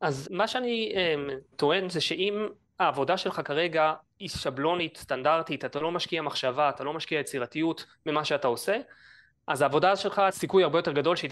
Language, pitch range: Hebrew, 140-175 Hz